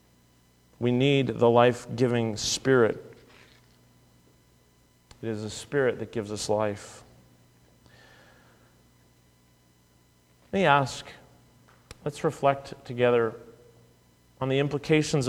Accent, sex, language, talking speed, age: American, male, English, 85 wpm, 40-59